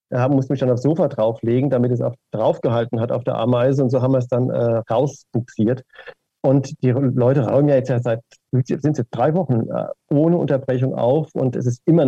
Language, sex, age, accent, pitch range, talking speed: German, male, 40-59, German, 120-145 Hz, 210 wpm